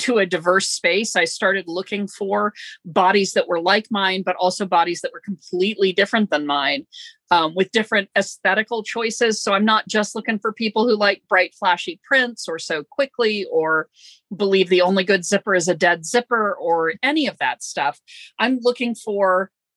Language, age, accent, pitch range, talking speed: English, 40-59, American, 180-240 Hz, 180 wpm